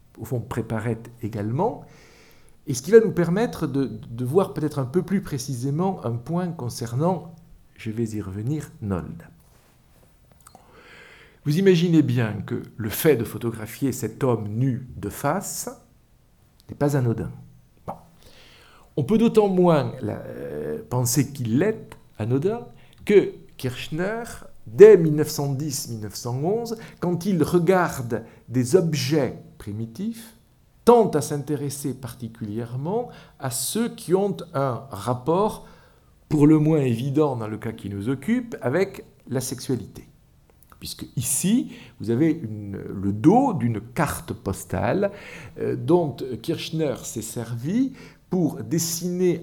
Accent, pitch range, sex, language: French, 115-175 Hz, male, French